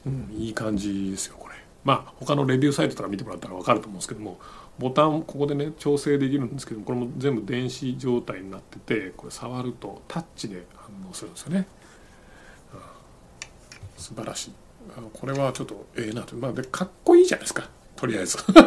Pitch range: 115-175 Hz